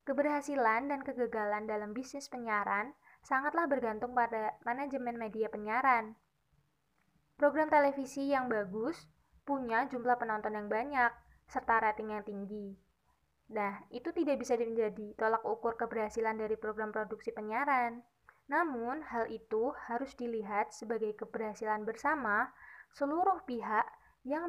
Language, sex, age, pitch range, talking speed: Indonesian, female, 20-39, 220-260 Hz, 120 wpm